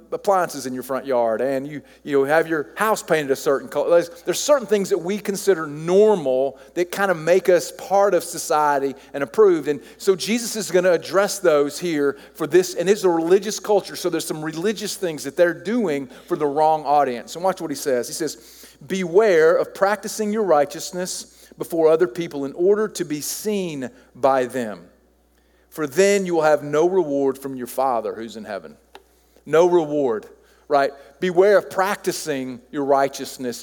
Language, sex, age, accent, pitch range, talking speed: English, male, 40-59, American, 145-200 Hz, 185 wpm